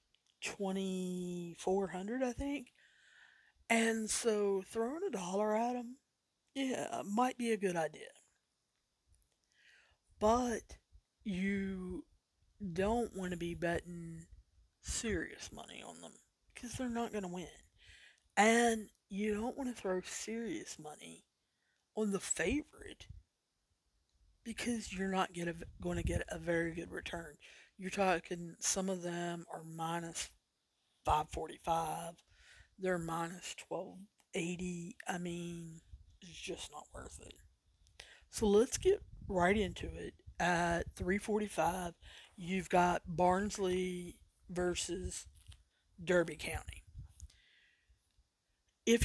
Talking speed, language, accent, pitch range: 110 wpm, English, American, 165-210 Hz